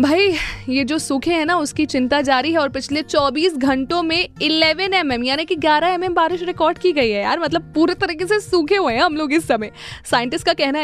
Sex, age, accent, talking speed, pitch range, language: female, 20-39, native, 225 wpm, 235-310 Hz, Hindi